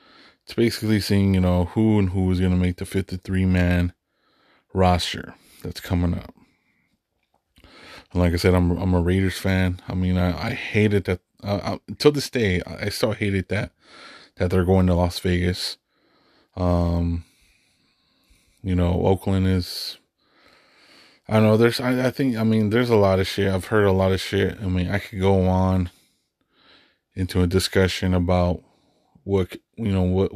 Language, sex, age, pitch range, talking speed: English, male, 20-39, 90-100 Hz, 170 wpm